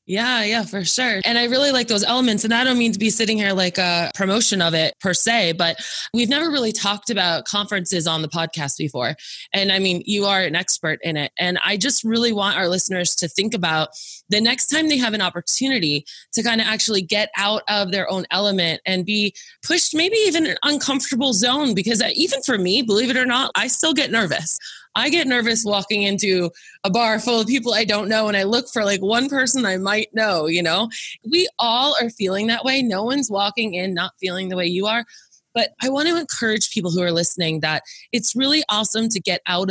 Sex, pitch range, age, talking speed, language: female, 180-235 Hz, 20-39, 225 wpm, English